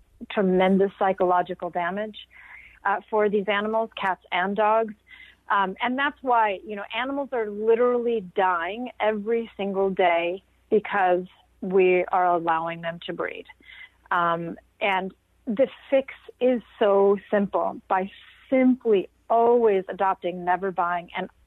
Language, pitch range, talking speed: English, 185-240 Hz, 125 wpm